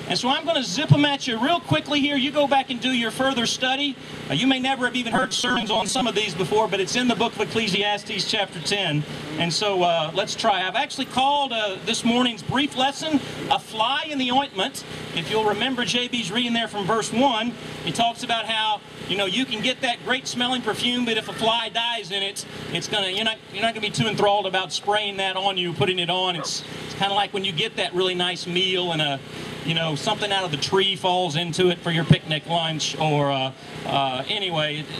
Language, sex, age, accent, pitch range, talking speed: English, male, 40-59, American, 190-255 Hz, 240 wpm